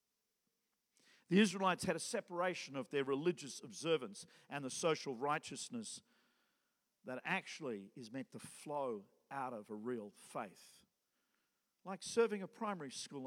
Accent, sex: Australian, male